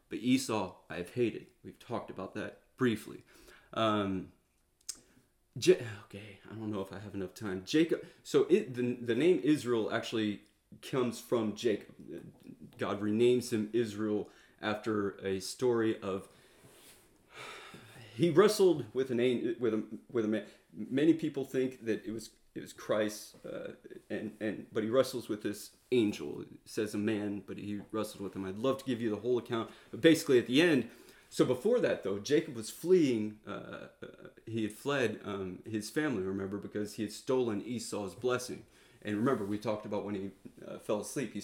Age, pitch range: 30-49, 105-125 Hz